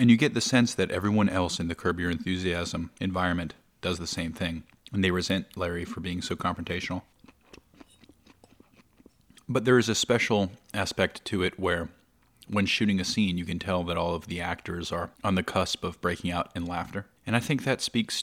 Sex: male